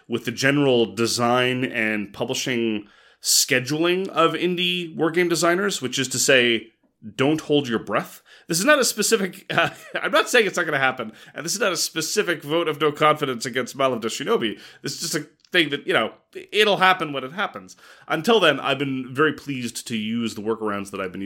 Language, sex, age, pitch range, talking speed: English, male, 30-49, 110-150 Hz, 205 wpm